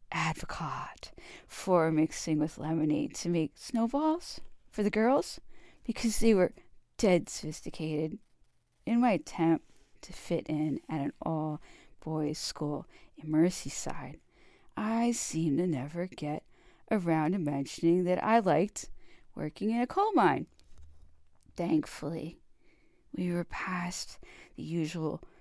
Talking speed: 120 wpm